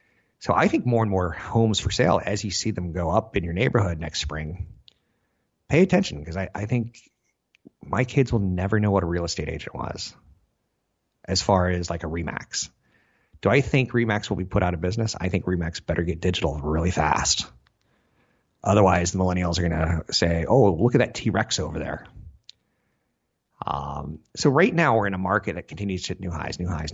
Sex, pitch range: male, 85-110 Hz